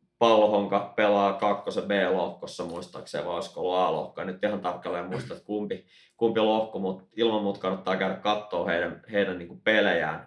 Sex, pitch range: male, 95-115 Hz